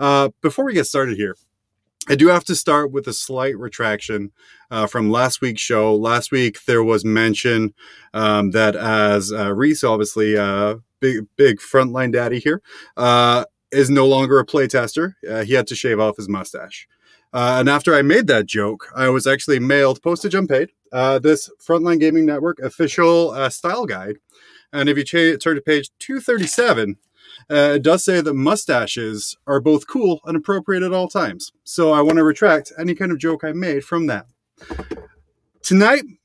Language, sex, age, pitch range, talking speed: English, male, 30-49, 120-160 Hz, 185 wpm